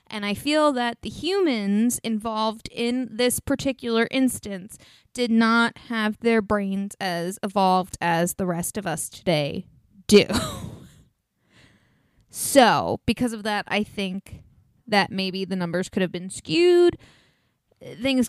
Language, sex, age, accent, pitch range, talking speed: English, female, 20-39, American, 195-250 Hz, 130 wpm